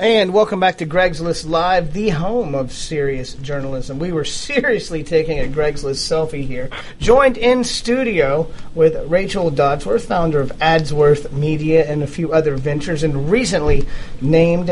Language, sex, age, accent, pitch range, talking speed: English, male, 40-59, American, 150-190 Hz, 160 wpm